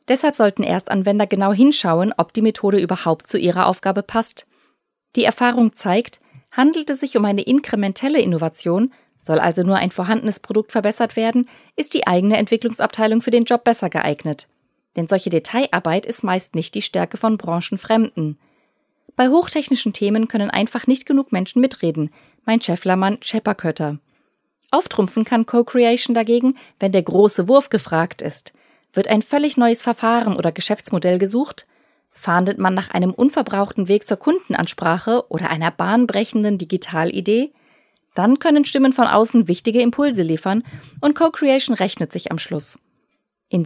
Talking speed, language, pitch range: 145 wpm, German, 180-235 Hz